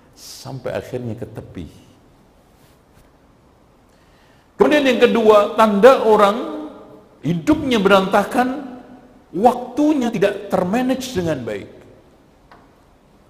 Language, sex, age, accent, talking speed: Indonesian, male, 50-69, native, 70 wpm